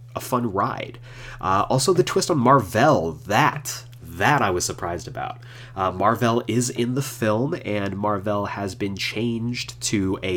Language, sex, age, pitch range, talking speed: English, male, 30-49, 100-125 Hz, 160 wpm